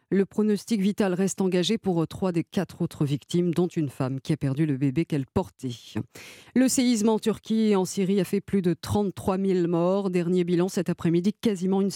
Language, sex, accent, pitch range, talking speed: French, female, French, 160-200 Hz, 205 wpm